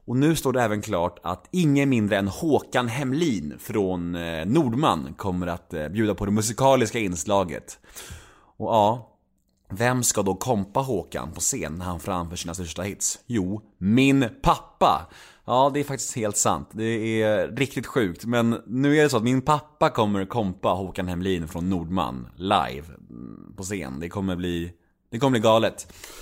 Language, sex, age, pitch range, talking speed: Swedish, male, 30-49, 90-135 Hz, 165 wpm